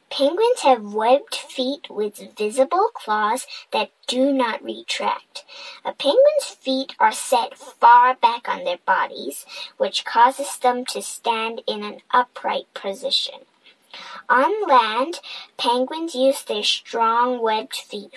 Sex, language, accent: male, Chinese, American